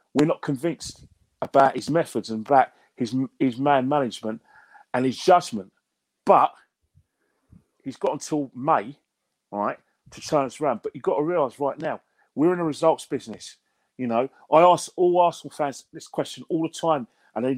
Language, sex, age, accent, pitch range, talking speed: English, male, 40-59, British, 125-155 Hz, 180 wpm